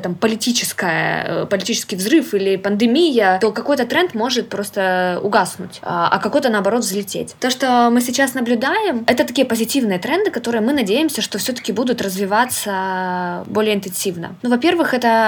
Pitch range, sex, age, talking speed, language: 205-250 Hz, female, 20-39, 135 wpm, Russian